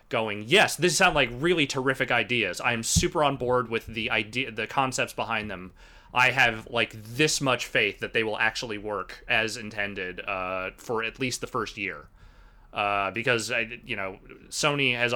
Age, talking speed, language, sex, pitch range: 30-49, 185 wpm, English, male, 100-115 Hz